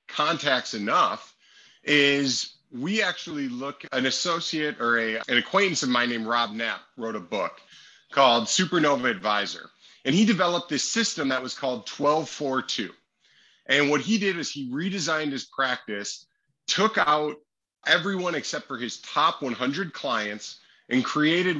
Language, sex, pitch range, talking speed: English, male, 130-175 Hz, 145 wpm